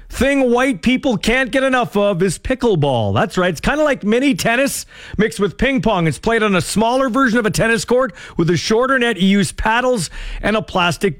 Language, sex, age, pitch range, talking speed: English, male, 40-59, 160-255 Hz, 210 wpm